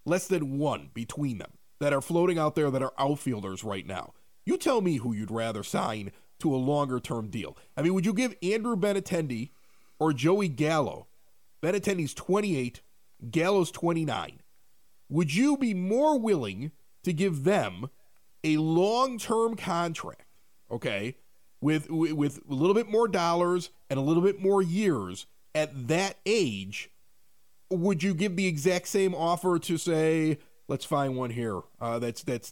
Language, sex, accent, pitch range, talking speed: English, male, American, 135-190 Hz, 155 wpm